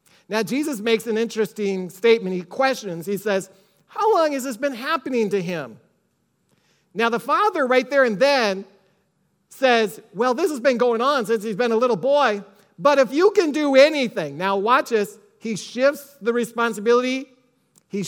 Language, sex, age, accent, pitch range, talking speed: English, male, 40-59, American, 195-260 Hz, 175 wpm